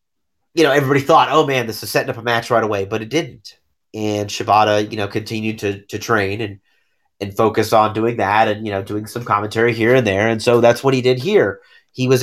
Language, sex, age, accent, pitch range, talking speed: English, male, 30-49, American, 105-130 Hz, 240 wpm